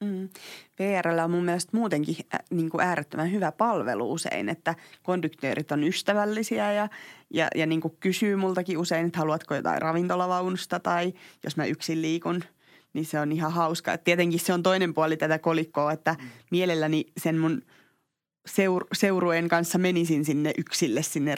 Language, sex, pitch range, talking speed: Finnish, female, 160-185 Hz, 150 wpm